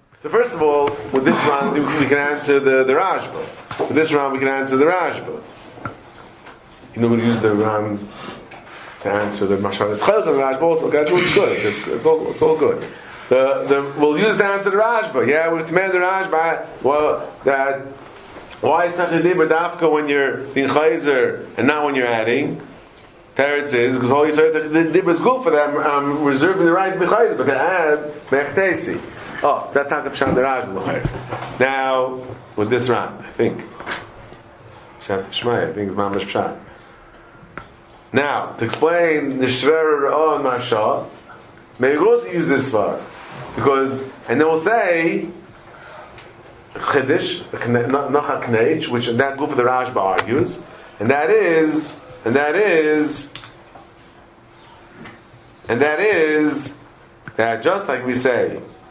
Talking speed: 155 wpm